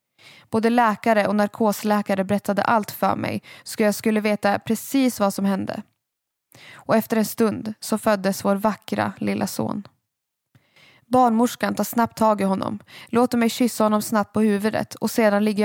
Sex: female